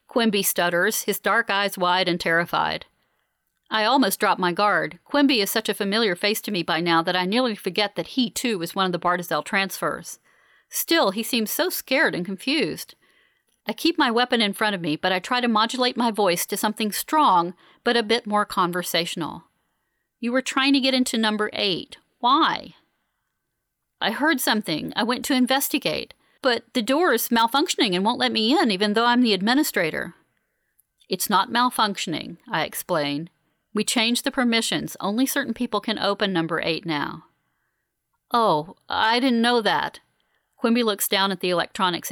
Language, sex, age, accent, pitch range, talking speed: English, female, 40-59, American, 185-250 Hz, 180 wpm